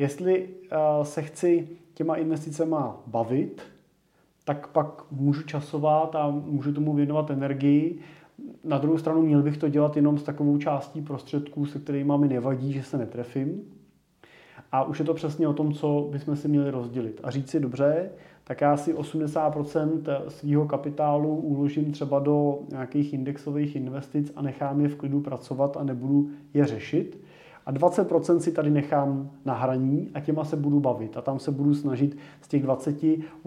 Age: 30-49